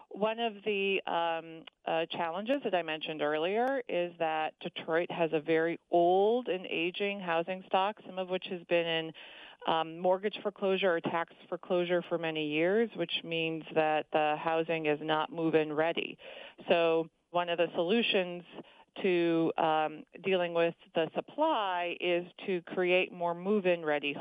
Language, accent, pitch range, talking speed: English, American, 160-185 Hz, 155 wpm